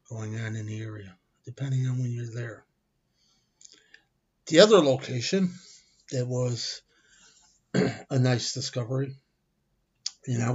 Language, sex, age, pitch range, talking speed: English, male, 50-69, 130-145 Hz, 115 wpm